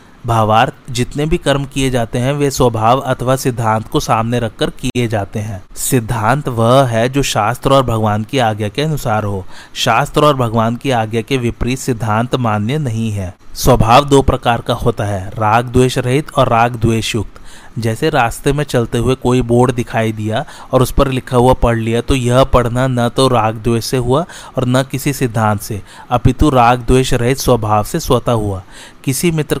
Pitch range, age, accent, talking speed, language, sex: 115-135 Hz, 30-49, native, 170 wpm, Hindi, male